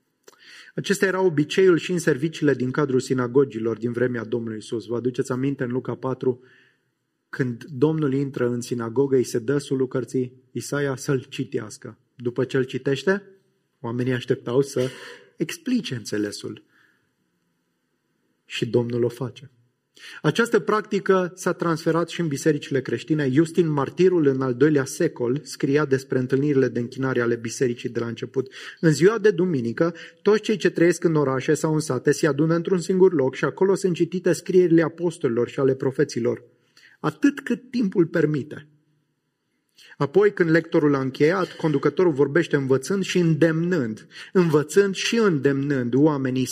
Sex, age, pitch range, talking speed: male, 30-49, 130-170 Hz, 145 wpm